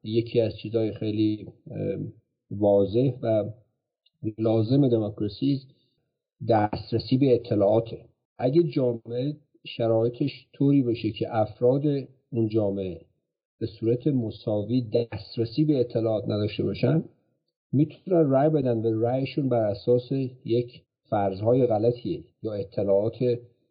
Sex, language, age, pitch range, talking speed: male, Persian, 50-69, 110-140 Hz, 100 wpm